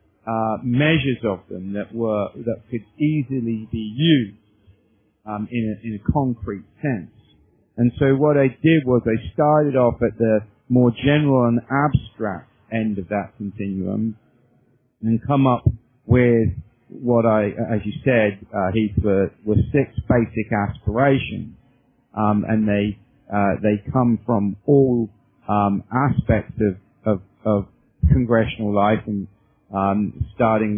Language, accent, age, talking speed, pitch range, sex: English, British, 50-69, 140 wpm, 105-125 Hz, male